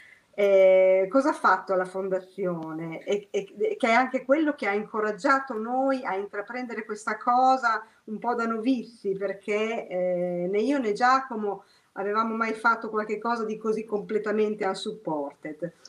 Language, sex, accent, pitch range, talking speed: Italian, female, native, 195-245 Hz, 145 wpm